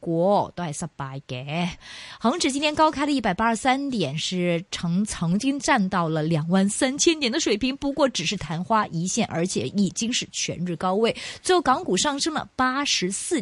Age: 20-39